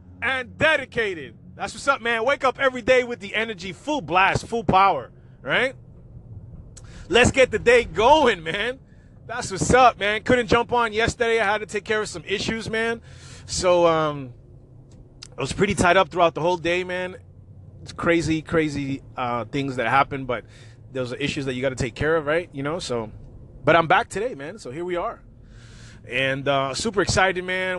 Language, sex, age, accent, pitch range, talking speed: English, male, 30-49, American, 115-175 Hz, 190 wpm